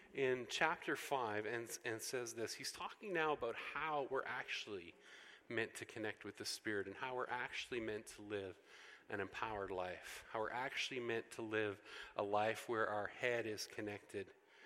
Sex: male